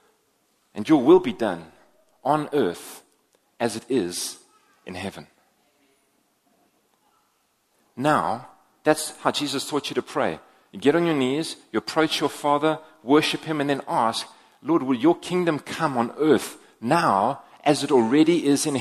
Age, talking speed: 40-59, 150 wpm